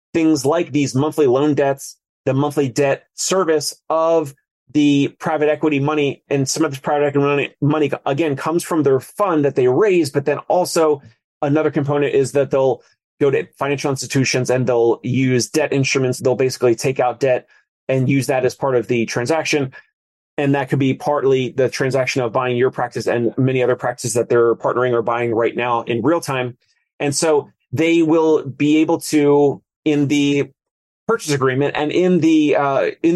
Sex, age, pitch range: male, 30-49, 130-155 Hz